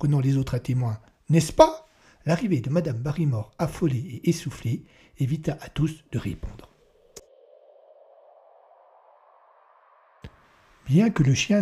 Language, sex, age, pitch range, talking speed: French, male, 60-79, 115-160 Hz, 115 wpm